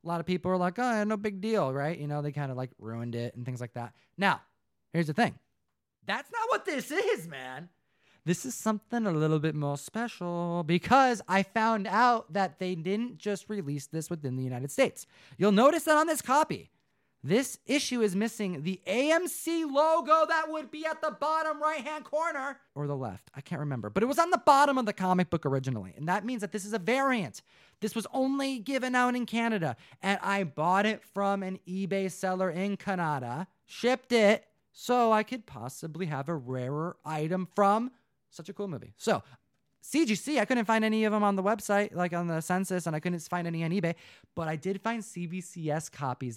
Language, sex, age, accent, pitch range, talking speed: English, male, 30-49, American, 160-245 Hz, 210 wpm